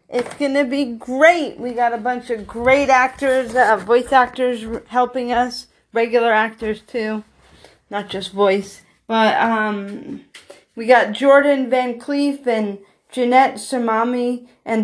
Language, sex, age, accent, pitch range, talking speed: English, female, 40-59, American, 230-275 Hz, 140 wpm